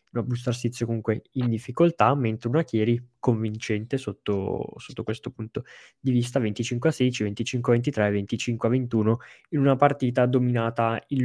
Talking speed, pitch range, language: 135 wpm, 105-125 Hz, Italian